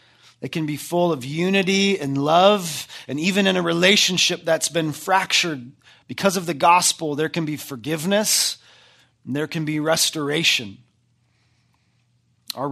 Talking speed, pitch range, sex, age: 140 wpm, 135-175 Hz, male, 30-49